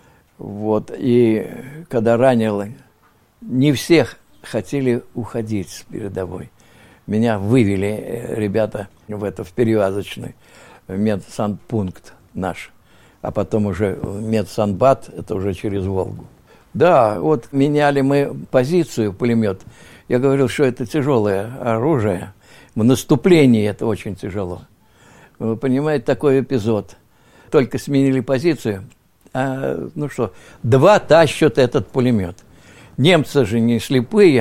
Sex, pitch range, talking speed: male, 105-140 Hz, 110 wpm